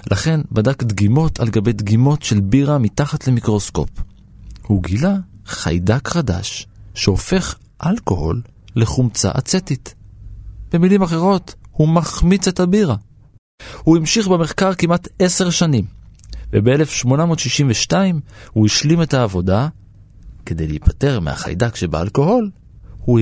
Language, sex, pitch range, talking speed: Hebrew, male, 100-150 Hz, 105 wpm